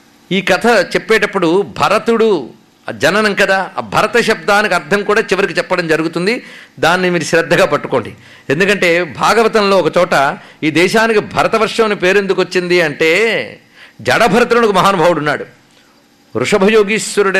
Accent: native